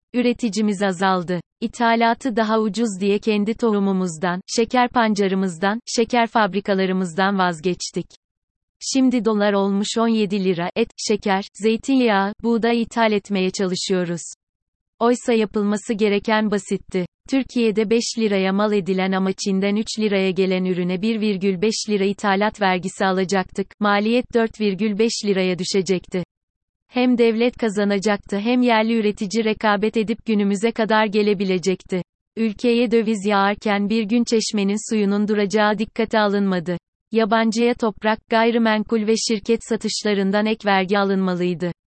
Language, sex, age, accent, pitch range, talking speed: Turkish, female, 30-49, native, 190-225 Hz, 115 wpm